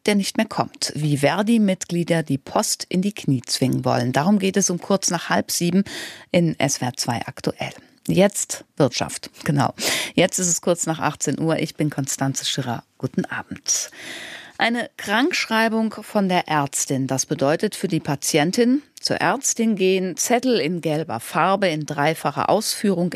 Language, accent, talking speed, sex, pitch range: German, German, 160 wpm, female, 145-210 Hz